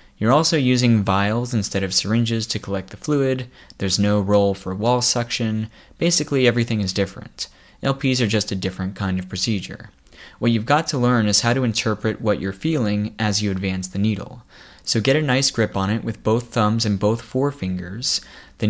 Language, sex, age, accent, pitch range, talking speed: English, male, 20-39, American, 100-120 Hz, 195 wpm